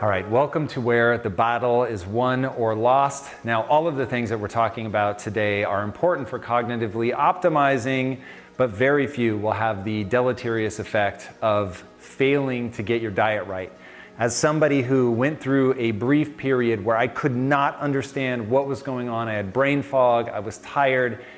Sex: male